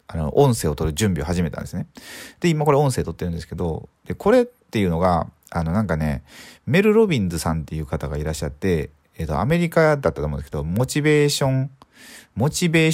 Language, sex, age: Japanese, male, 40-59